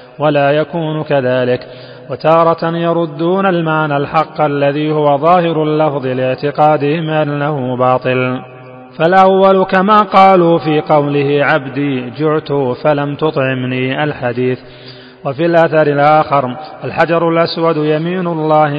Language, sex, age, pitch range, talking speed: Arabic, male, 30-49, 140-165 Hz, 100 wpm